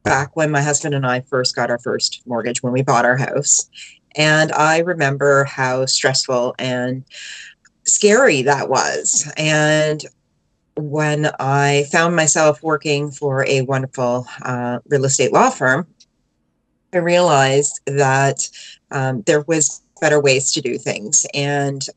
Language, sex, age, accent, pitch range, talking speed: English, female, 30-49, American, 130-150 Hz, 140 wpm